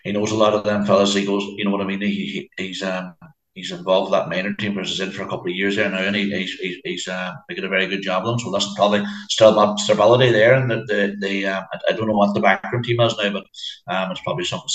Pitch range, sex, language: 95-105 Hz, male, English